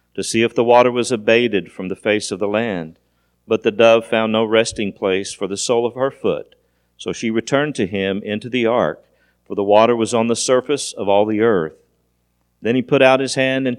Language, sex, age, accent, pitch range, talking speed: English, male, 50-69, American, 85-120 Hz, 225 wpm